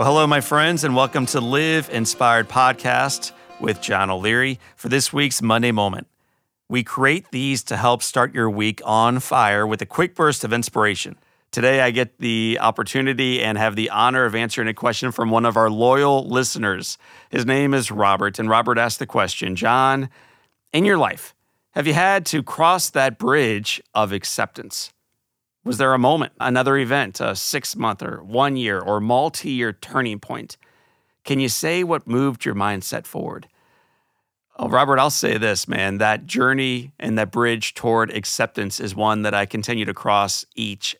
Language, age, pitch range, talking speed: English, 40-59, 105-130 Hz, 170 wpm